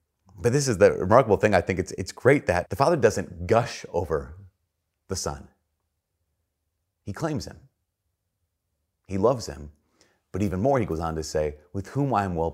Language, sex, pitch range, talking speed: English, male, 85-105 Hz, 180 wpm